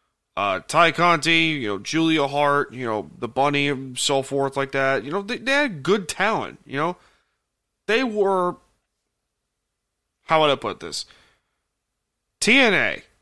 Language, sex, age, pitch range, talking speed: English, male, 30-49, 125-160 Hz, 150 wpm